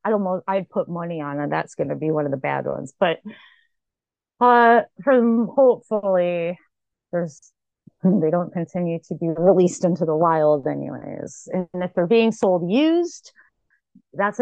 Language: English